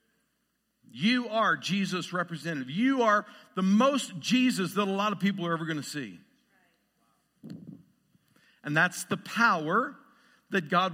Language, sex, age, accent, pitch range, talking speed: English, male, 50-69, American, 195-245 Hz, 135 wpm